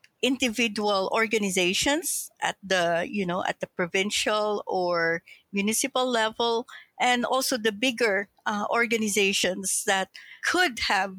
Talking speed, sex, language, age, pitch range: 115 wpm, female, English, 60-79, 185-220 Hz